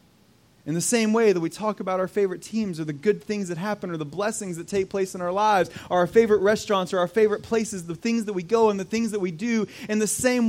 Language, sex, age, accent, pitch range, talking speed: English, male, 30-49, American, 145-210 Hz, 275 wpm